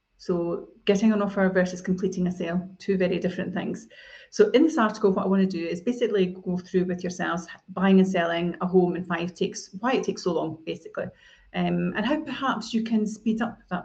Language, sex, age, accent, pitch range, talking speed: English, female, 30-49, British, 180-220 Hz, 215 wpm